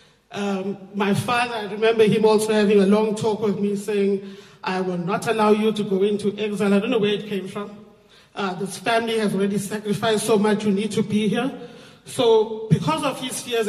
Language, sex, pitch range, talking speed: English, male, 200-245 Hz, 210 wpm